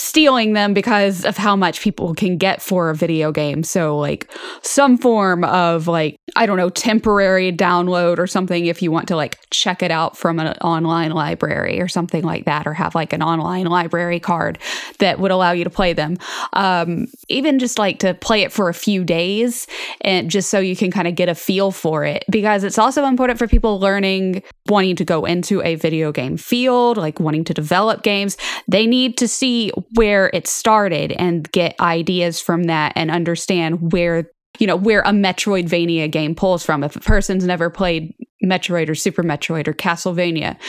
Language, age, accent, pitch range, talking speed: English, 10-29, American, 170-205 Hz, 195 wpm